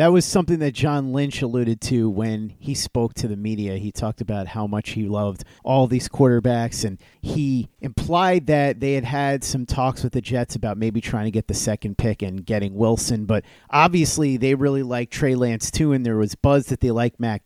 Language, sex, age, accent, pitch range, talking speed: English, male, 40-59, American, 120-150 Hz, 215 wpm